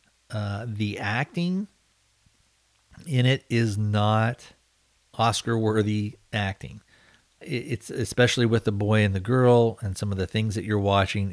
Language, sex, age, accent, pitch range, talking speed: English, male, 40-59, American, 100-115 Hz, 130 wpm